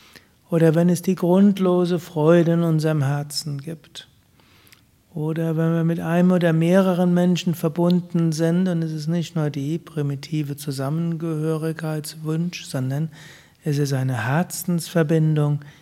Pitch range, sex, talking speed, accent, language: 145-175 Hz, male, 125 wpm, German, German